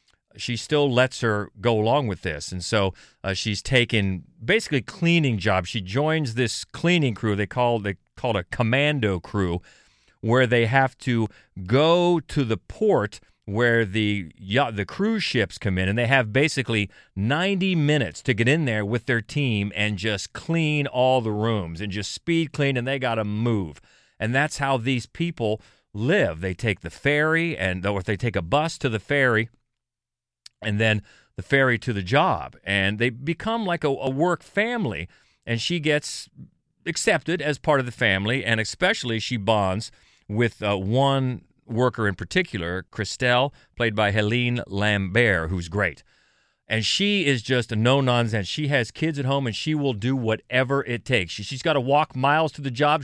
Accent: American